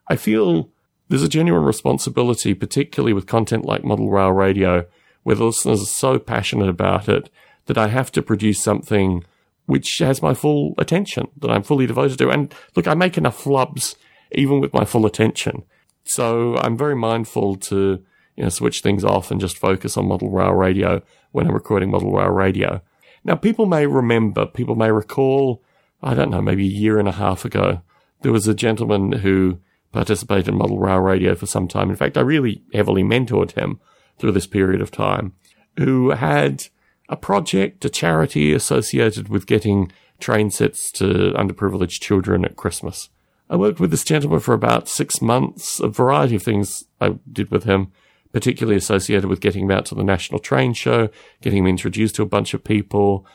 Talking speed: 185 wpm